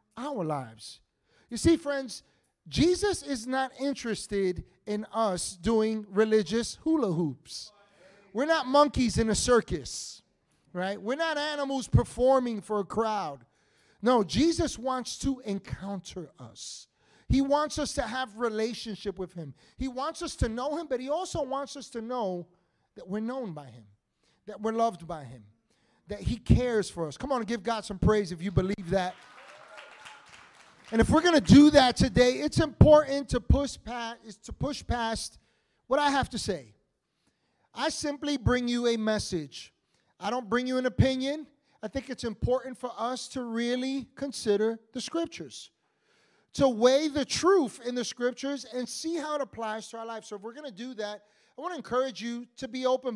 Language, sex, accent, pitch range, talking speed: English, male, American, 205-270 Hz, 175 wpm